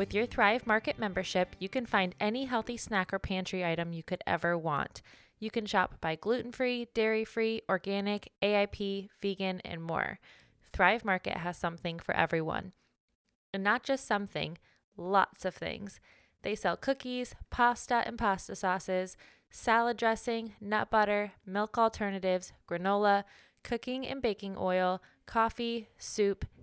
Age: 20-39